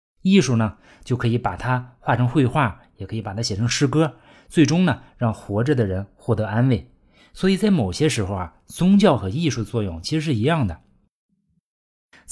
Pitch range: 105-140 Hz